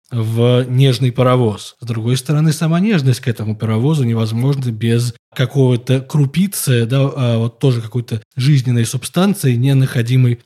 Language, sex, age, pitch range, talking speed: Russian, male, 20-39, 120-145 Hz, 125 wpm